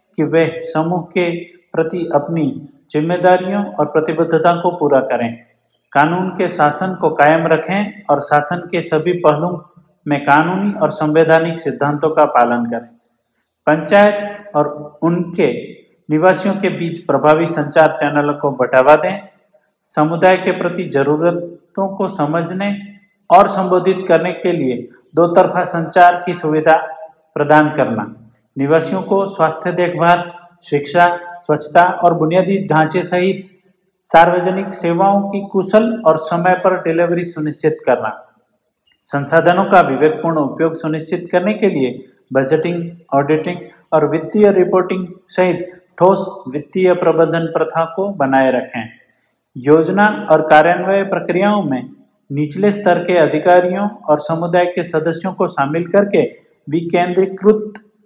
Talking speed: 125 wpm